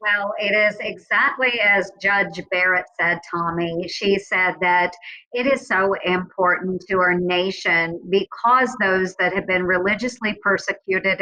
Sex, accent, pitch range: male, American, 185-220 Hz